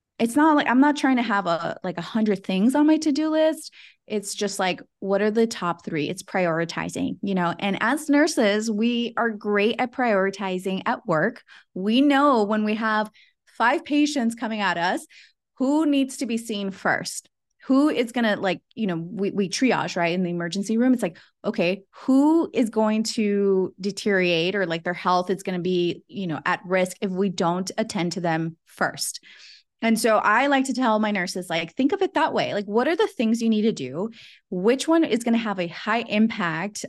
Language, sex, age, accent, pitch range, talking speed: English, female, 20-39, American, 180-230 Hz, 210 wpm